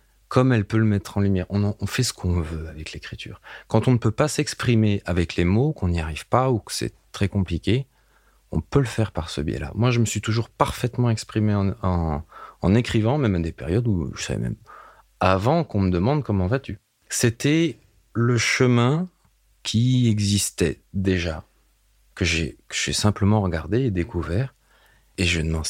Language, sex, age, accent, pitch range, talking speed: French, male, 30-49, French, 90-125 Hz, 195 wpm